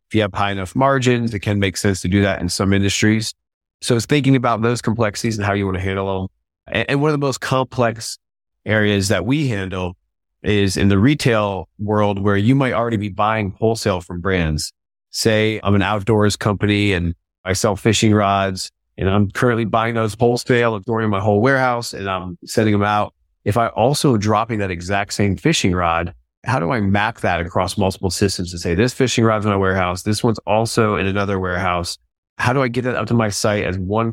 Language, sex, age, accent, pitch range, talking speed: English, male, 30-49, American, 95-115 Hz, 210 wpm